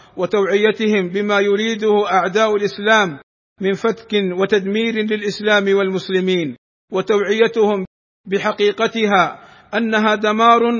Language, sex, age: Arabic, male, 50-69